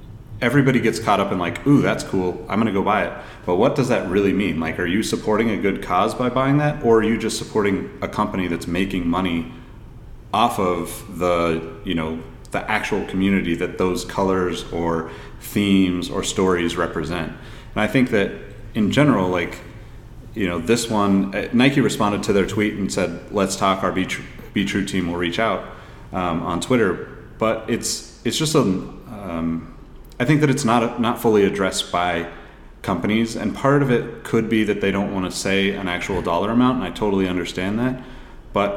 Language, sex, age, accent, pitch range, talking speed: English, male, 30-49, American, 90-110 Hz, 195 wpm